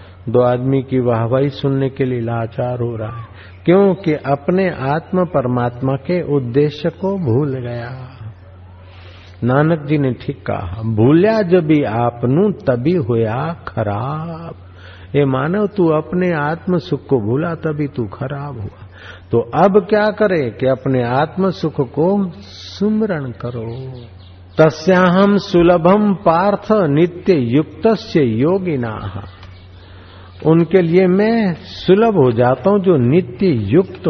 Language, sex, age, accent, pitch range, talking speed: Hindi, male, 50-69, native, 110-170 Hz, 125 wpm